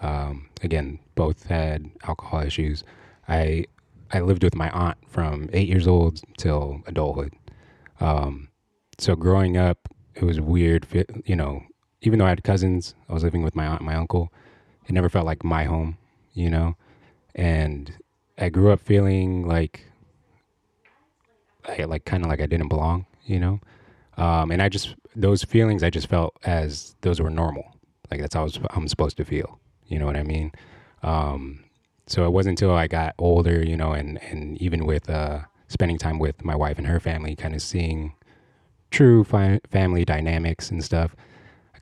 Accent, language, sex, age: American, English, male, 20-39